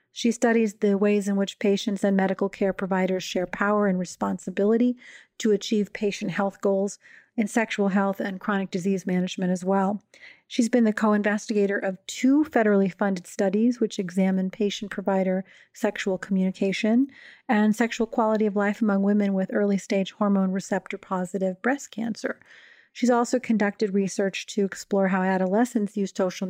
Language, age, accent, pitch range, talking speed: English, 40-59, American, 195-220 Hz, 150 wpm